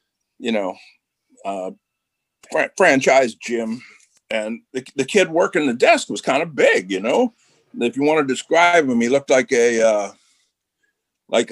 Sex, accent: male, American